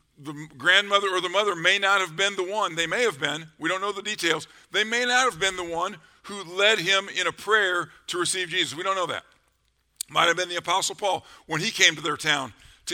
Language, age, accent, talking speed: English, 50-69, American, 245 wpm